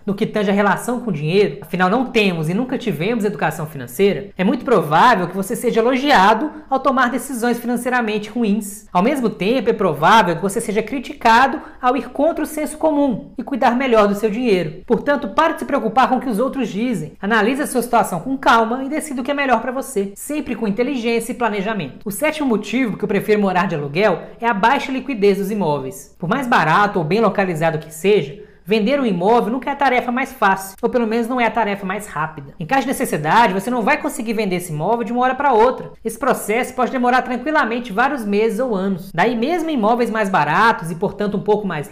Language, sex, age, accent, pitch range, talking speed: Portuguese, female, 20-39, Brazilian, 200-250 Hz, 220 wpm